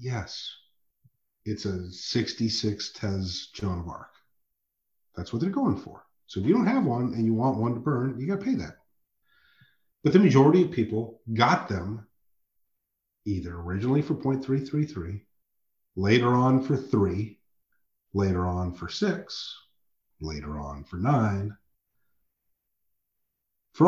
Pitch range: 95-135 Hz